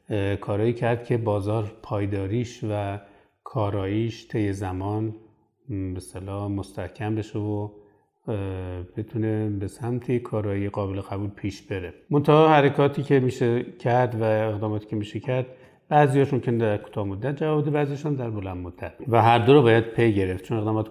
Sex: male